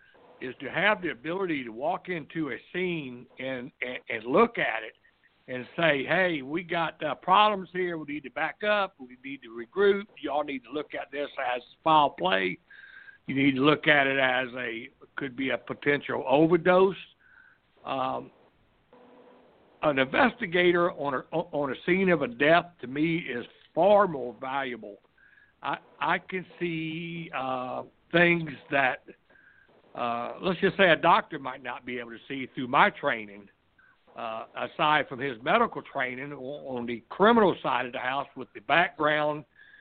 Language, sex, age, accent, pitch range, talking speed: English, male, 60-79, American, 130-175 Hz, 165 wpm